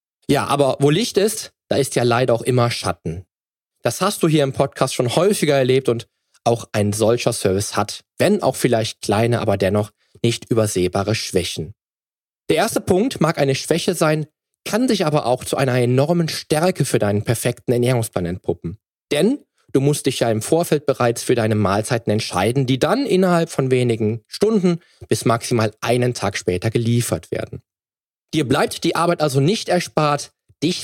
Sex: male